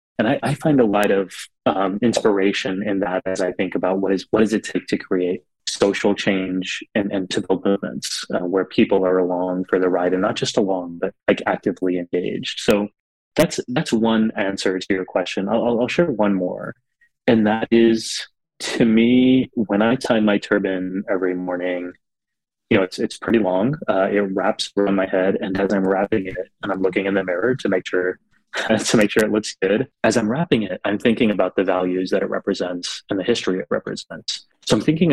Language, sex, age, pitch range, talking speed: English, male, 30-49, 95-105 Hz, 210 wpm